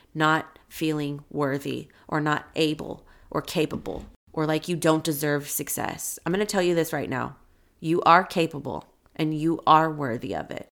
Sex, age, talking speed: female, 30-49, 175 wpm